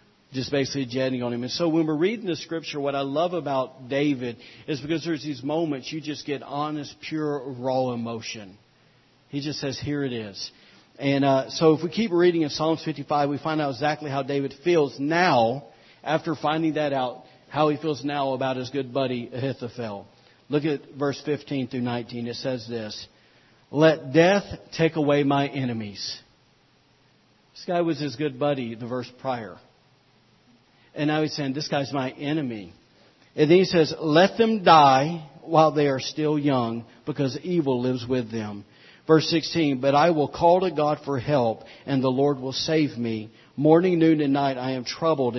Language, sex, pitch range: English, male, 125-155 Hz